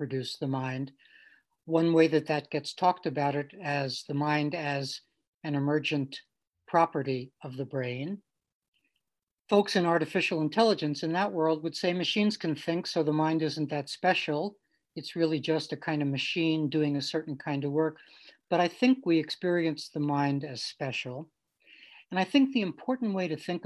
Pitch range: 145-180 Hz